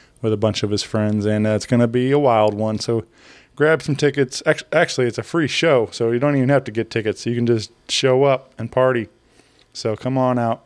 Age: 20-39